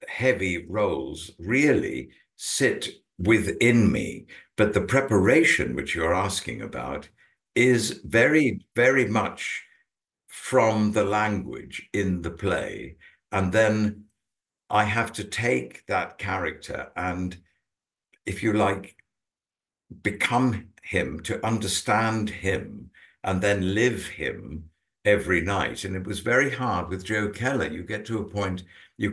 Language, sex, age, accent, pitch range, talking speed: English, male, 60-79, British, 90-115 Hz, 125 wpm